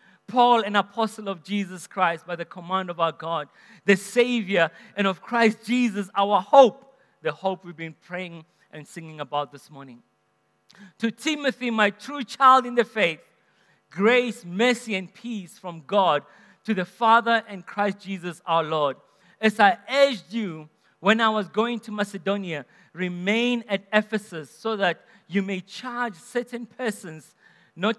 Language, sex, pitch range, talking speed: English, male, 185-235 Hz, 155 wpm